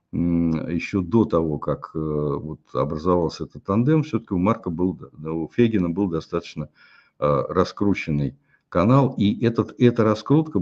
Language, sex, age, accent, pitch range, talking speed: Russian, male, 60-79, native, 90-125 Hz, 120 wpm